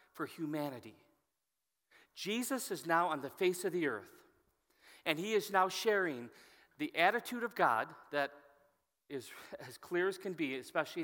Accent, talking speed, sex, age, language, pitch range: American, 145 wpm, male, 40-59, English, 145-195 Hz